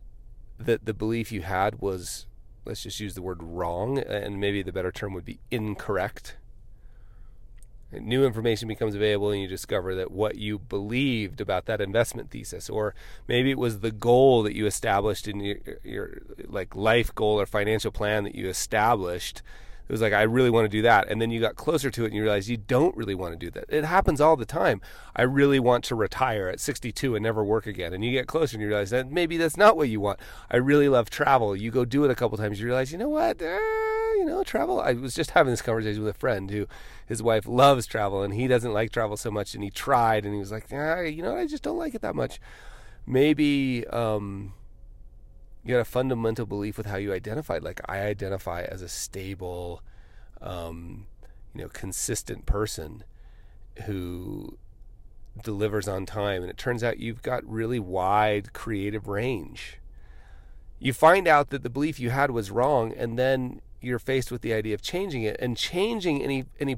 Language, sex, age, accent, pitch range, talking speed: English, male, 30-49, American, 100-125 Hz, 210 wpm